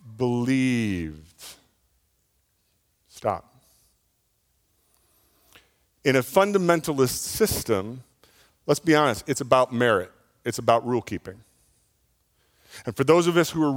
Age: 40-59